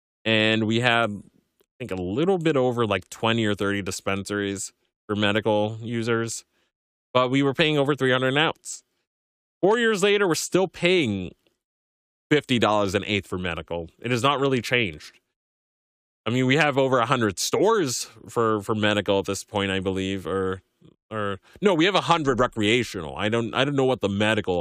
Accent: American